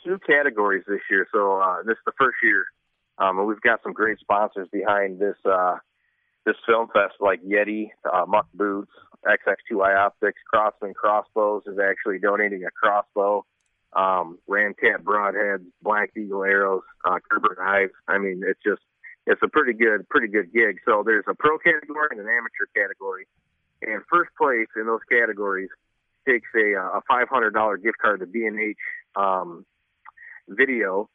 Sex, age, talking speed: male, 30-49, 165 wpm